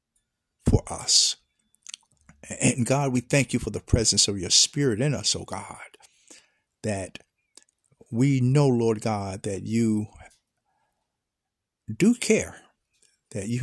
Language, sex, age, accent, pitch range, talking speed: English, male, 60-79, American, 105-125 Hz, 125 wpm